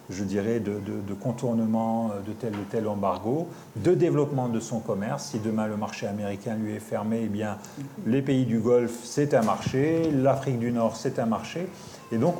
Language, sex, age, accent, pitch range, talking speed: French, male, 40-59, French, 110-135 Hz, 200 wpm